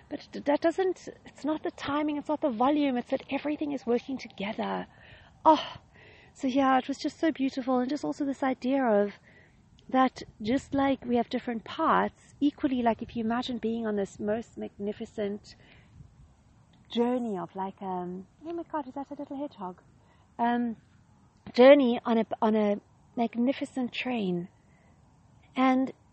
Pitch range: 230-285 Hz